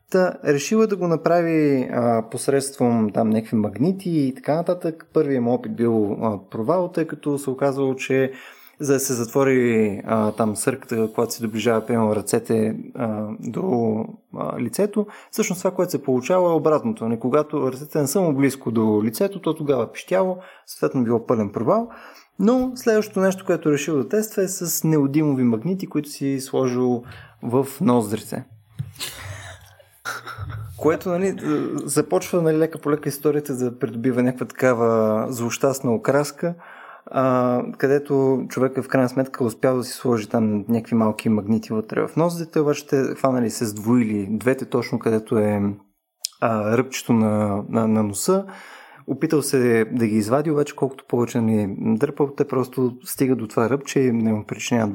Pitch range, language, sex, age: 115-150 Hz, Bulgarian, male, 20-39